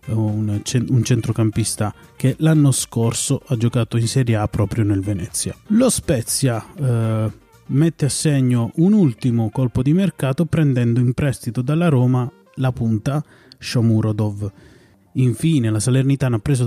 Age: 30-49